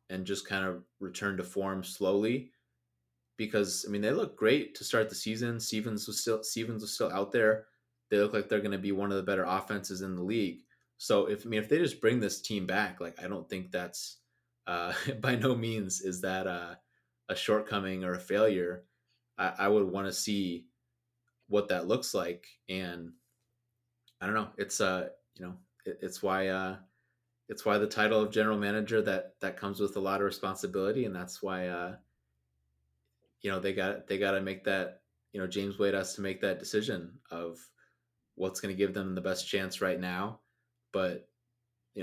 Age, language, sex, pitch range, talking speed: 20-39, English, male, 95-110 Hz, 200 wpm